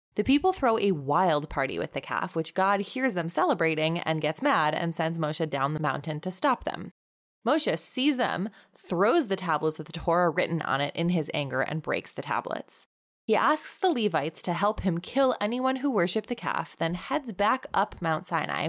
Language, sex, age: English, female, 20-39